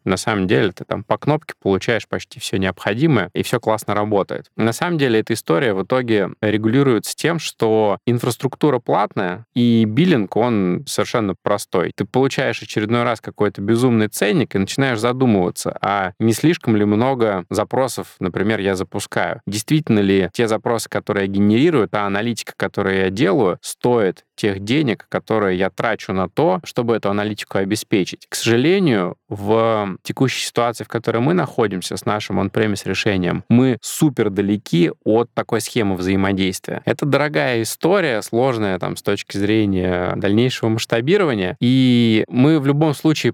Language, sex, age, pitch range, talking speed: Russian, male, 20-39, 100-120 Hz, 150 wpm